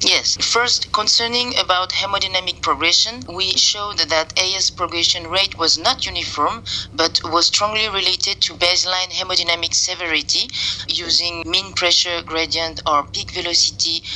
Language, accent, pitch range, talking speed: English, French, 155-180 Hz, 125 wpm